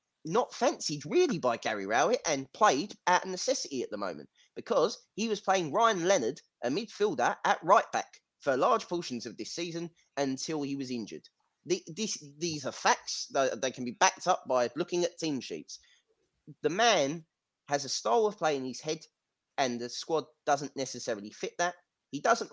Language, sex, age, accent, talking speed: English, male, 30-49, British, 175 wpm